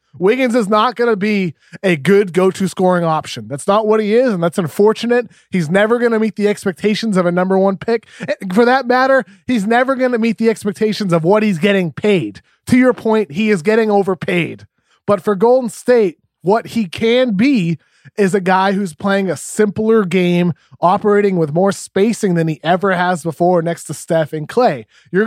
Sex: male